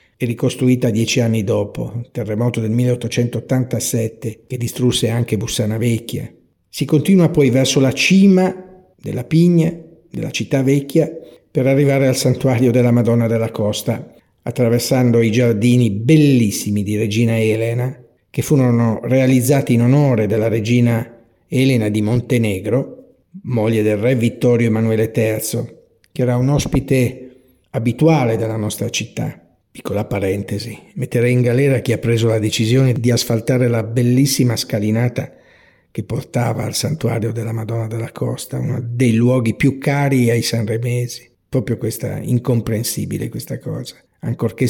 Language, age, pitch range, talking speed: Italian, 50-69, 115-130 Hz, 135 wpm